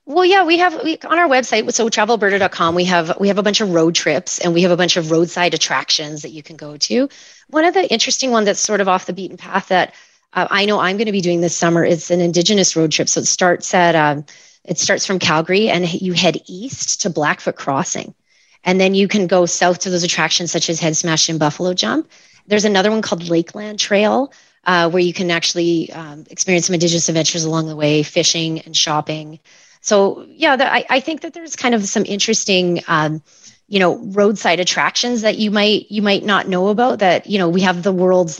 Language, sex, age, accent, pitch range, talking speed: English, female, 30-49, American, 165-205 Hz, 230 wpm